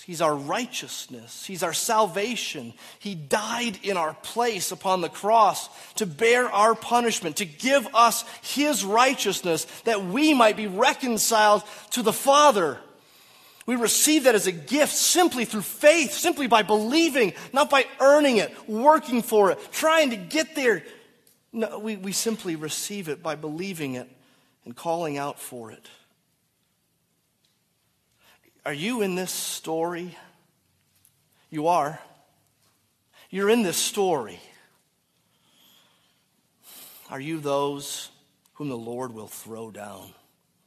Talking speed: 130 wpm